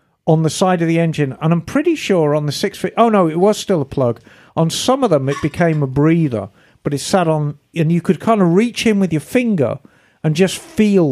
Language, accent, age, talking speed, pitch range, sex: English, British, 50-69, 255 wpm, 140-185 Hz, male